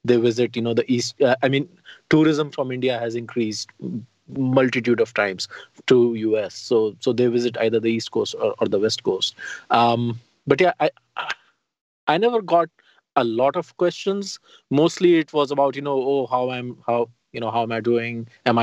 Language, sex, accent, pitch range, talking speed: English, male, Indian, 115-150 Hz, 195 wpm